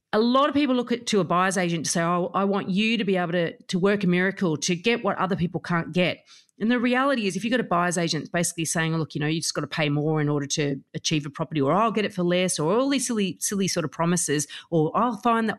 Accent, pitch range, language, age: Australian, 170-230 Hz, English, 40-59